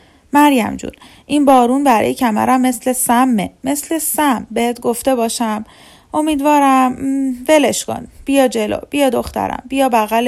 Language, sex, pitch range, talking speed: Persian, female, 185-225 Hz, 135 wpm